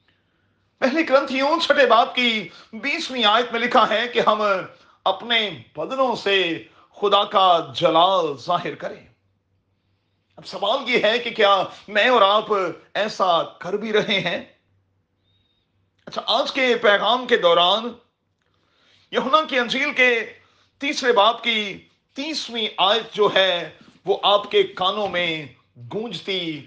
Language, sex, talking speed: Urdu, male, 130 wpm